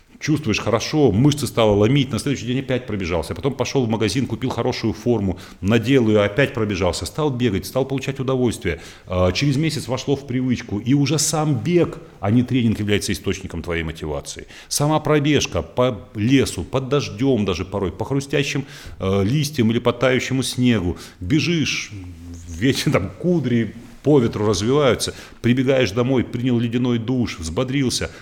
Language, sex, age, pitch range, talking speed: Russian, male, 40-59, 95-135 Hz, 150 wpm